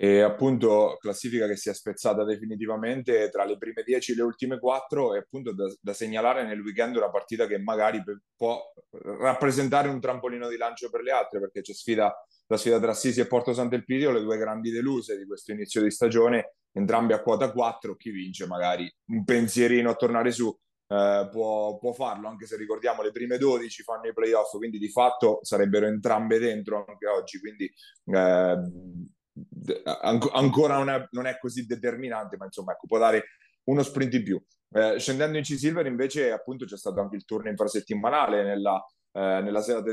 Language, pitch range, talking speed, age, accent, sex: Italian, 105-130 Hz, 180 wpm, 20-39, native, male